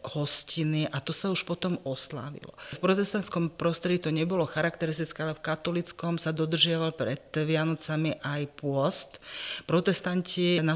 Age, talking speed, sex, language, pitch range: 40-59, 135 wpm, female, Slovak, 145-170 Hz